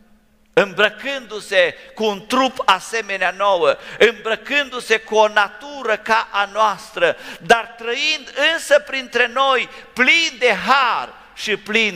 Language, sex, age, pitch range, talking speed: English, male, 50-69, 200-255 Hz, 115 wpm